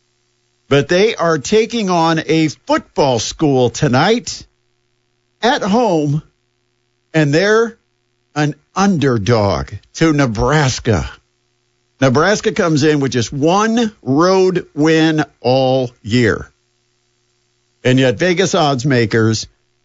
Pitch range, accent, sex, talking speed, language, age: 120-155 Hz, American, male, 95 wpm, English, 50-69